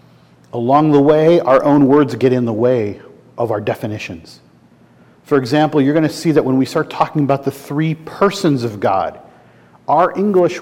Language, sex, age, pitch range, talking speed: English, male, 40-59, 120-170 Hz, 180 wpm